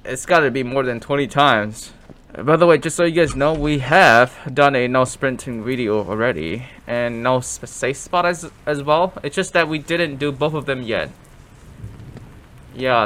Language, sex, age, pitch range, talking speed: English, male, 10-29, 105-155 Hz, 195 wpm